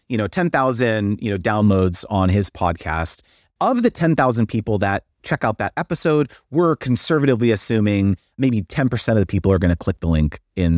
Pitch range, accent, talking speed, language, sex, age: 100-160 Hz, American, 175 wpm, English, male, 30-49